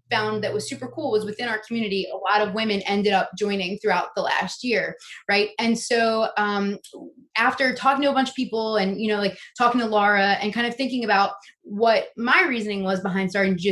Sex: female